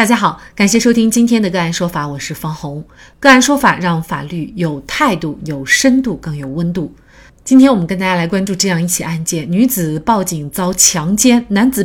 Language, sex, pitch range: Chinese, female, 170-245 Hz